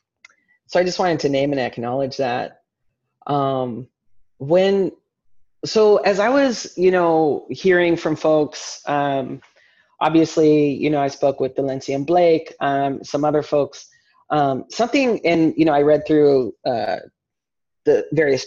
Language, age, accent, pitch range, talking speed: English, 30-49, American, 140-185 Hz, 145 wpm